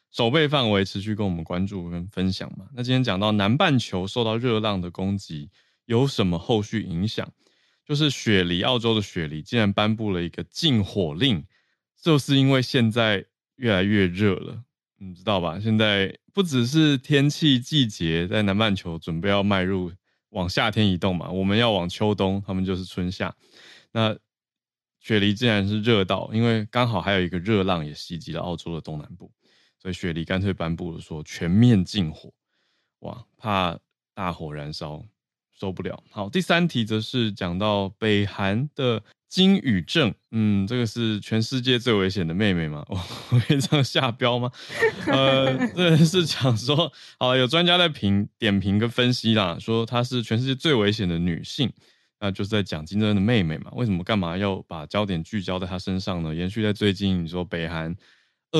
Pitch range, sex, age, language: 95-120 Hz, male, 20-39, Chinese